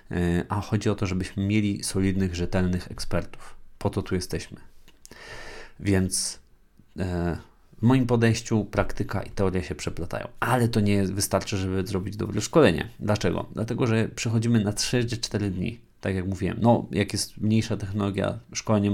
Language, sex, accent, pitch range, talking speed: Polish, male, native, 95-110 Hz, 145 wpm